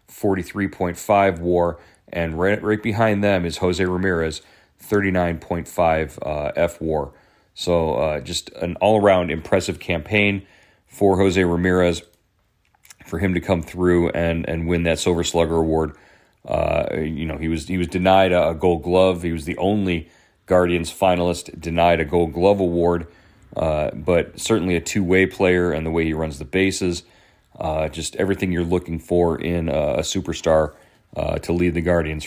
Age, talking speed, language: 40-59, 155 wpm, English